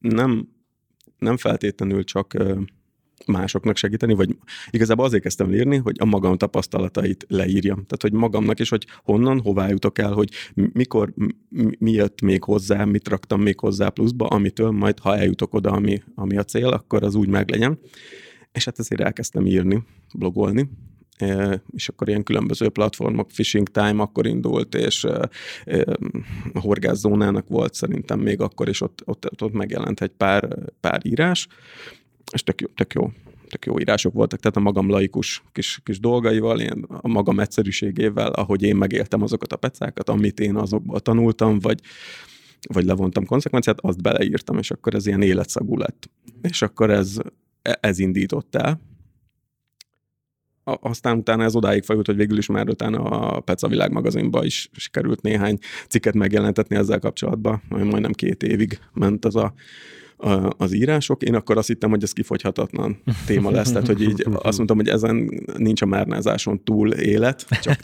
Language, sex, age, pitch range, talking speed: Hungarian, male, 30-49, 100-115 Hz, 160 wpm